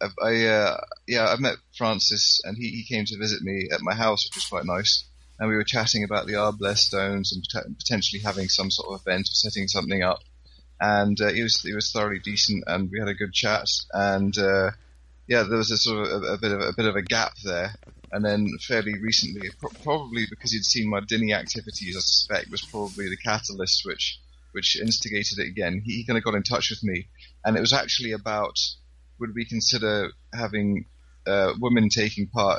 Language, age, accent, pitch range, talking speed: English, 30-49, British, 95-110 Hz, 215 wpm